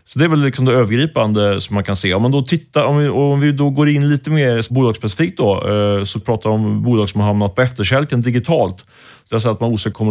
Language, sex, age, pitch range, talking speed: Swedish, male, 30-49, 105-125 Hz, 250 wpm